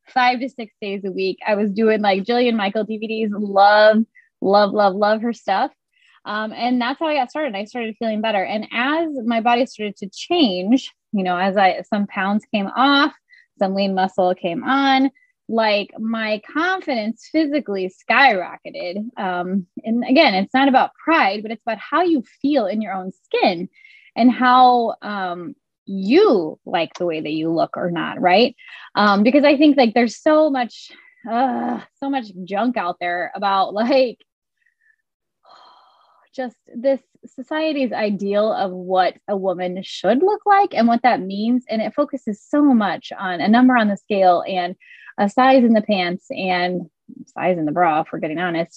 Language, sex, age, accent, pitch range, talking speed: English, female, 20-39, American, 200-275 Hz, 175 wpm